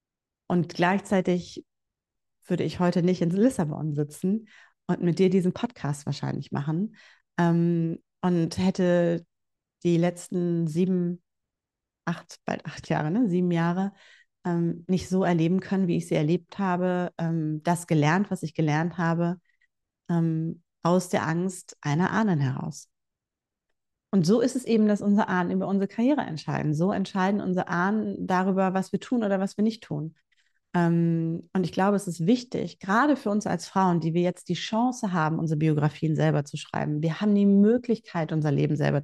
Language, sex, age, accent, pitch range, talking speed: German, female, 30-49, German, 170-195 Hz, 165 wpm